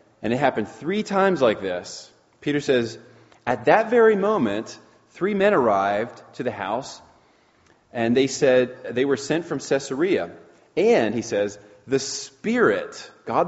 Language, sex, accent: English, male, American